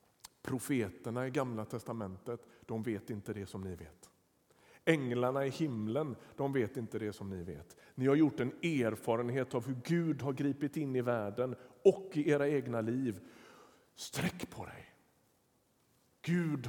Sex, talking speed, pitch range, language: male, 155 wpm, 120-160 Hz, Swedish